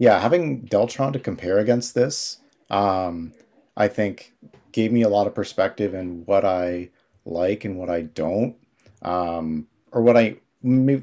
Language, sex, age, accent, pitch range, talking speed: English, male, 40-59, American, 90-115 Hz, 160 wpm